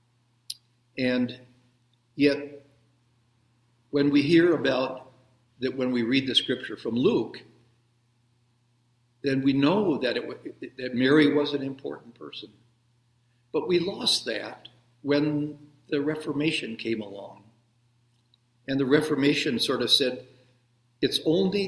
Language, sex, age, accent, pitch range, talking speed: English, male, 50-69, American, 120-140 Hz, 115 wpm